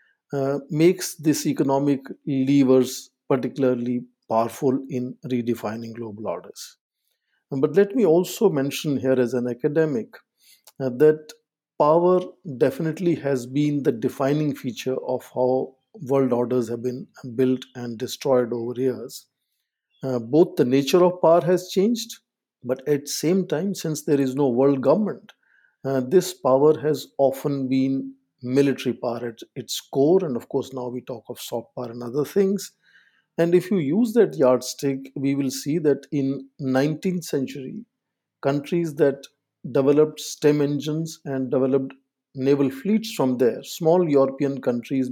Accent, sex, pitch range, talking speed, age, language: Indian, male, 130-160 Hz, 145 wpm, 50-69, English